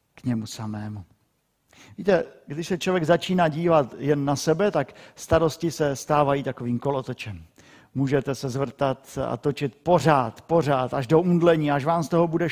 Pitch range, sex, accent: 120-150 Hz, male, native